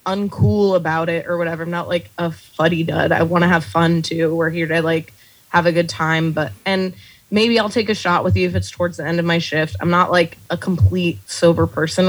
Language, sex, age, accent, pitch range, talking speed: English, female, 20-39, American, 160-185 Hz, 245 wpm